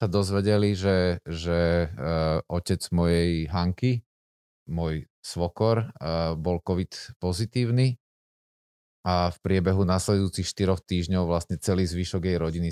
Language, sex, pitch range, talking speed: Slovak, male, 80-95 Hz, 110 wpm